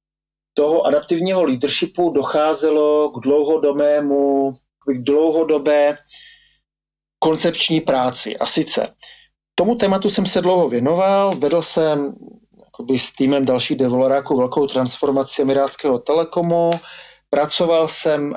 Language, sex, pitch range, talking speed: Slovak, male, 140-170 Hz, 100 wpm